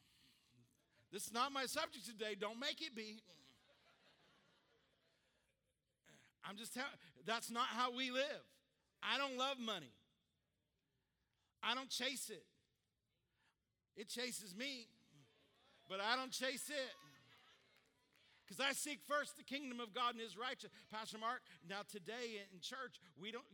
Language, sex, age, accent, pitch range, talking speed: English, male, 50-69, American, 180-240 Hz, 135 wpm